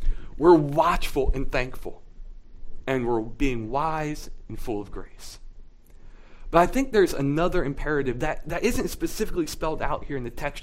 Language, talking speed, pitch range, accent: English, 160 wpm, 135-180 Hz, American